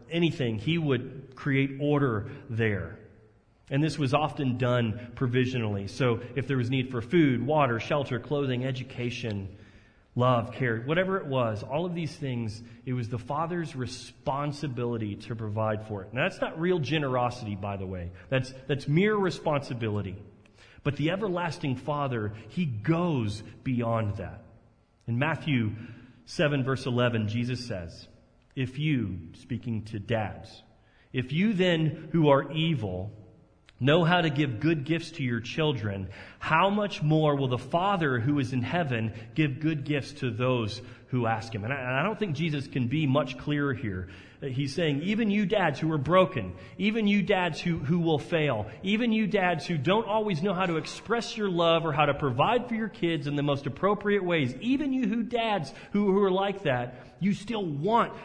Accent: American